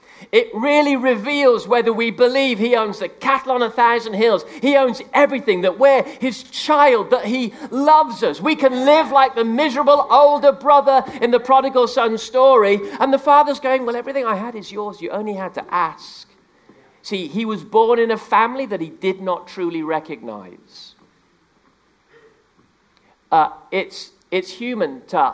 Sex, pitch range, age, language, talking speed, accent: male, 155-255 Hz, 40-59, English, 170 wpm, British